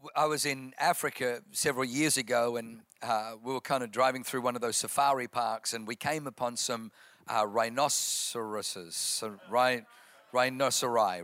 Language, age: English, 50-69